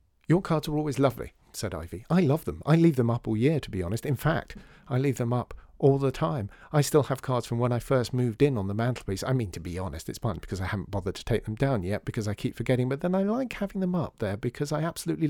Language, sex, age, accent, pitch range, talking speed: English, male, 50-69, British, 95-145 Hz, 285 wpm